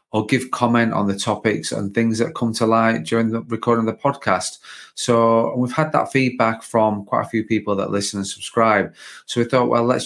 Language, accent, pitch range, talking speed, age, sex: English, British, 100-115 Hz, 220 wpm, 30-49, male